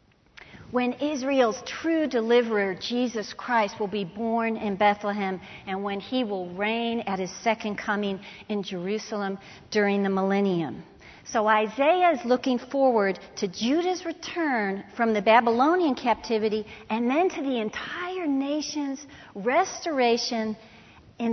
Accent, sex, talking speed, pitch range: American, female, 125 wpm, 200-260 Hz